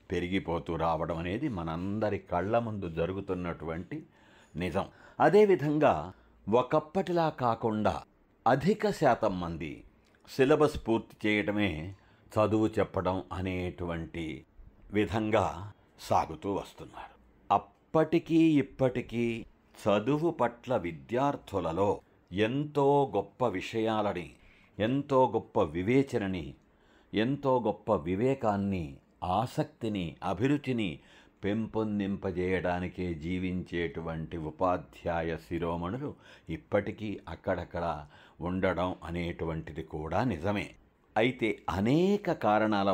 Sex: male